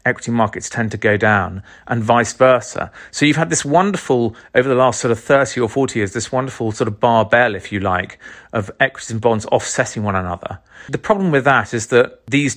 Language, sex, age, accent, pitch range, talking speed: English, male, 40-59, British, 110-140 Hz, 215 wpm